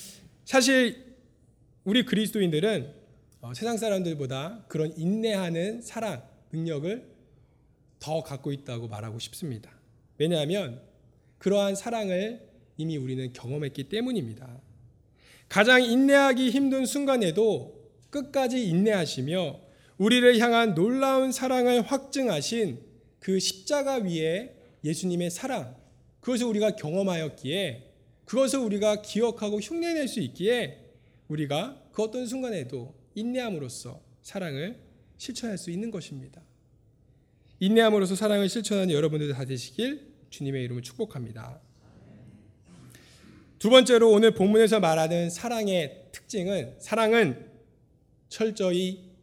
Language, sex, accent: Korean, male, native